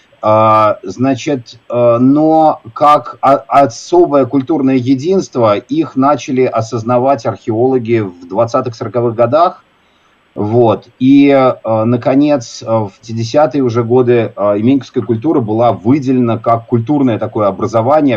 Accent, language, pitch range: native, Russian, 110-135 Hz